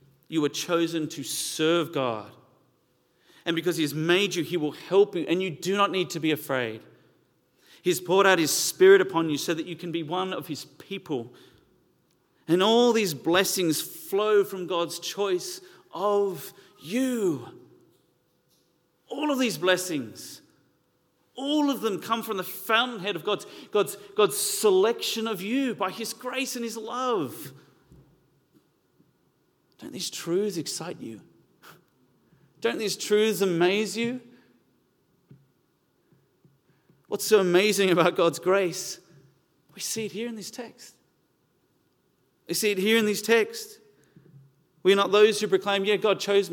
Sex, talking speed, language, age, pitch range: male, 145 wpm, English, 40-59, 160-210 Hz